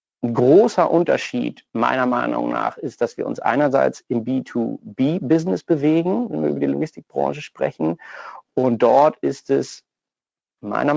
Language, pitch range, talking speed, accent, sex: German, 115-140 Hz, 135 wpm, German, male